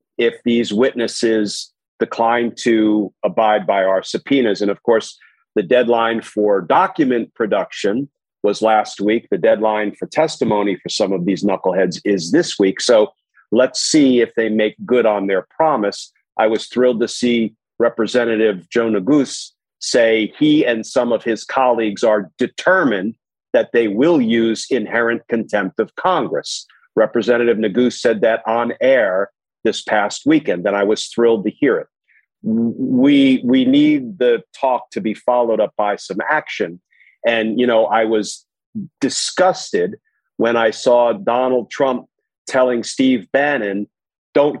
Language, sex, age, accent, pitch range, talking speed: English, male, 50-69, American, 110-140 Hz, 150 wpm